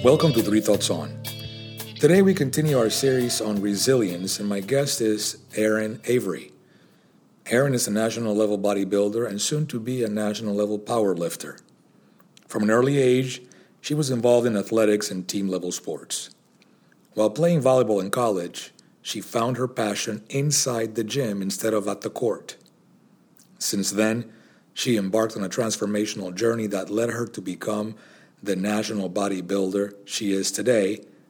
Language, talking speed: English, 150 wpm